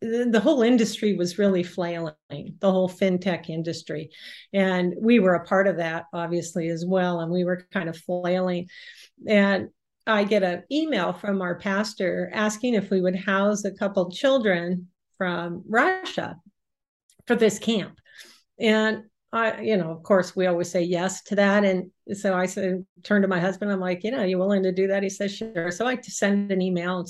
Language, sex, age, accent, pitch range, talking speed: English, female, 50-69, American, 180-210 Hz, 190 wpm